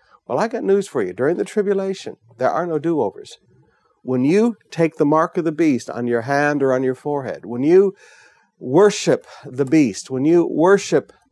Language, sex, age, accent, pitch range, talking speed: English, male, 60-79, American, 140-200 Hz, 190 wpm